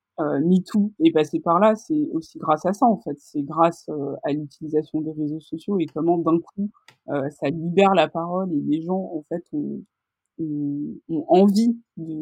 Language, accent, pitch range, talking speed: French, French, 155-200 Hz, 205 wpm